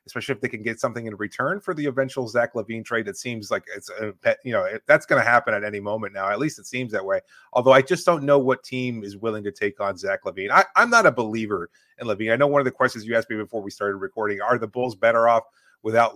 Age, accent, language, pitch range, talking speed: 30-49, American, English, 115-145 Hz, 280 wpm